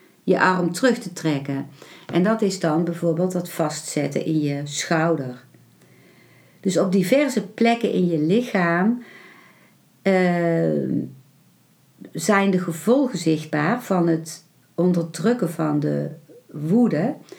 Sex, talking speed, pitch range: female, 115 wpm, 155-200 Hz